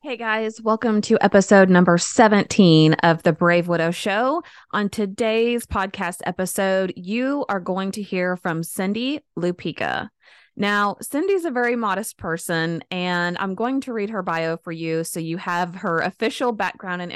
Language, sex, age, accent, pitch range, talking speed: English, female, 20-39, American, 170-210 Hz, 160 wpm